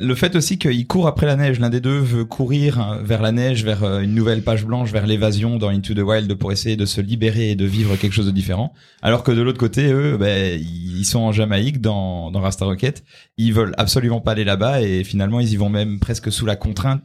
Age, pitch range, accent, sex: 30-49, 100-120 Hz, French, male